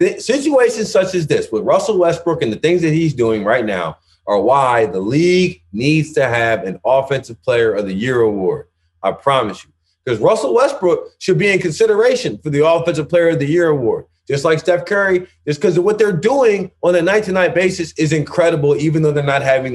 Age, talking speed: 30-49, 215 wpm